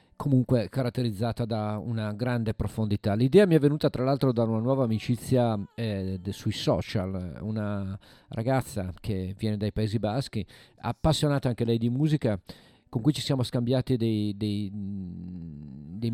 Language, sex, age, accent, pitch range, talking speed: Italian, male, 40-59, native, 105-130 Hz, 140 wpm